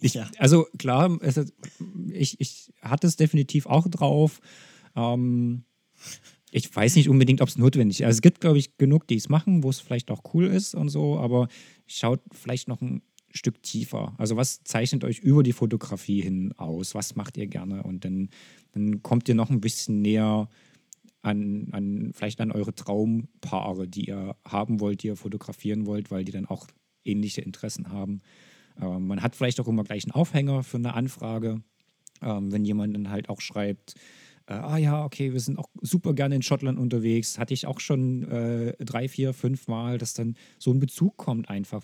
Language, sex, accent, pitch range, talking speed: German, male, German, 105-140 Hz, 185 wpm